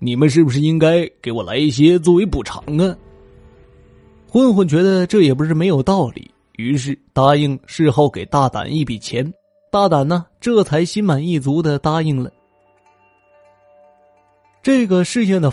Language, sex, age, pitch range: Chinese, male, 20-39, 125-175 Hz